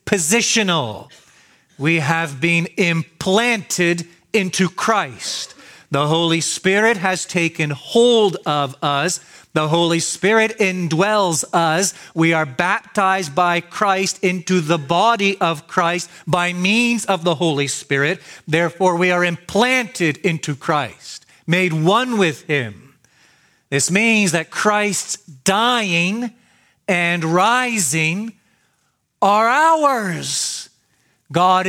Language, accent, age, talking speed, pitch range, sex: English, American, 40-59, 105 wpm, 150-190 Hz, male